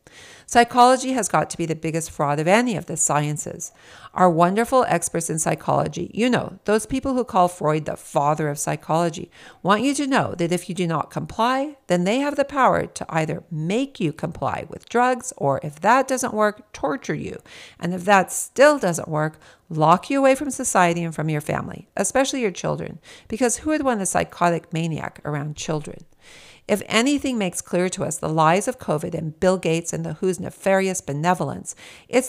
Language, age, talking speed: English, 50-69, 195 wpm